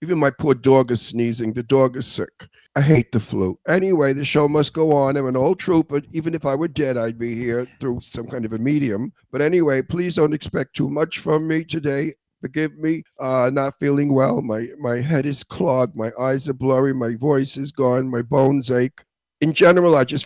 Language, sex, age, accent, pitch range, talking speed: English, male, 50-69, American, 130-150 Hz, 220 wpm